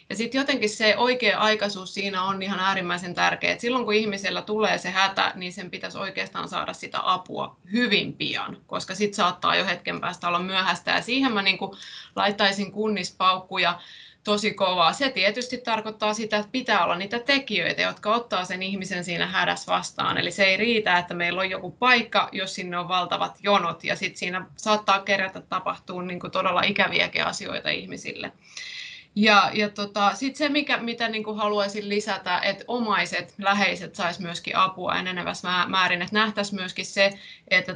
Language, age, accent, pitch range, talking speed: Finnish, 20-39, native, 185-215 Hz, 170 wpm